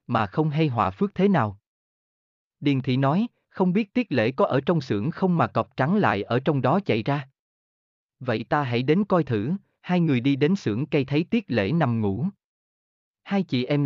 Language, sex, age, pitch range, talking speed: Vietnamese, male, 20-39, 110-160 Hz, 210 wpm